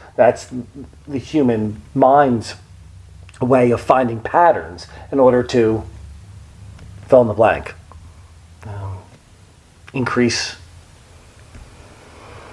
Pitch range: 90-130 Hz